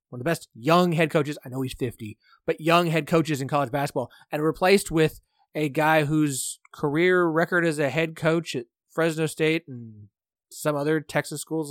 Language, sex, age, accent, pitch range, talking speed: English, male, 30-49, American, 135-185 Hz, 195 wpm